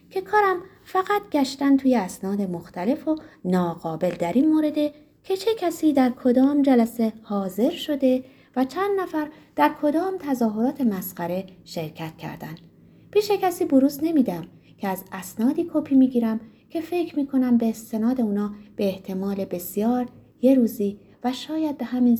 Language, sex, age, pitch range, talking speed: Persian, female, 30-49, 180-280 Hz, 145 wpm